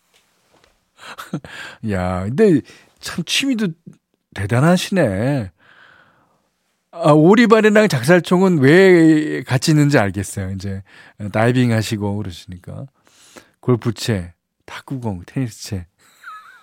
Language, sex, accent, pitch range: Korean, male, native, 105-160 Hz